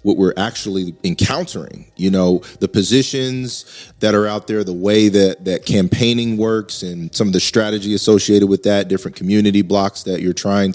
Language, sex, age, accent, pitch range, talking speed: English, male, 30-49, American, 95-115 Hz, 180 wpm